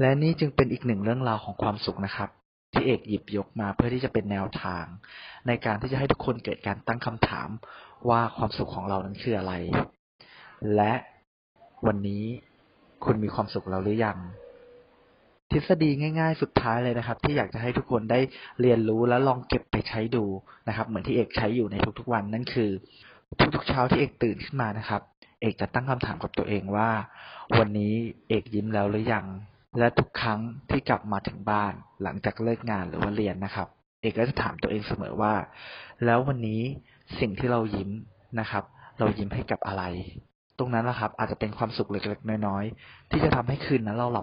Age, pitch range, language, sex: 20-39, 100-120 Hz, Thai, male